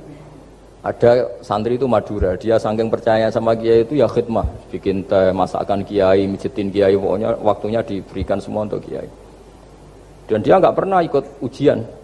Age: 50-69